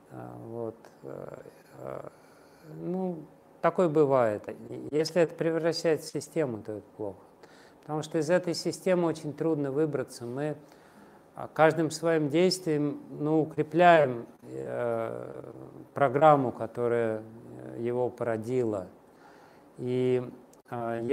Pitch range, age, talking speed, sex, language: 120-150 Hz, 50-69, 95 wpm, male, Russian